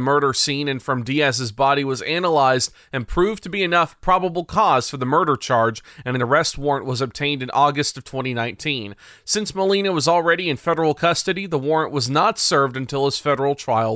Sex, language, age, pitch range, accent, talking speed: male, English, 30-49, 130-165 Hz, American, 195 wpm